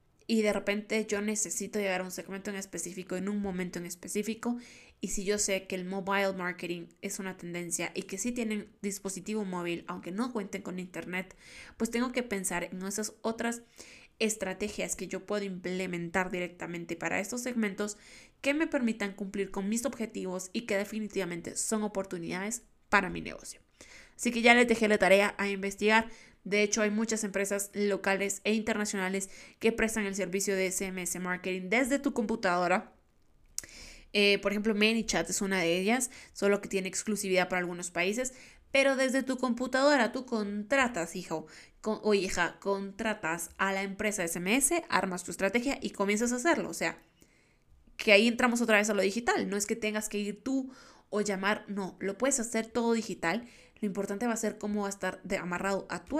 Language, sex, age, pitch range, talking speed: Spanish, female, 20-39, 190-225 Hz, 180 wpm